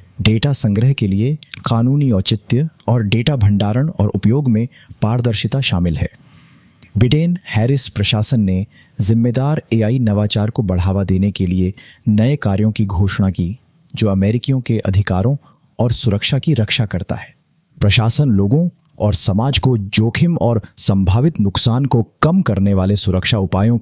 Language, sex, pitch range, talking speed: Hindi, male, 95-125 Hz, 145 wpm